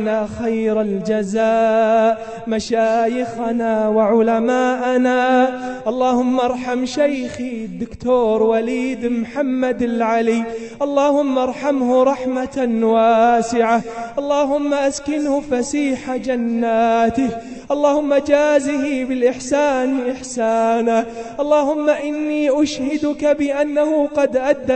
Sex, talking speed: male, 70 wpm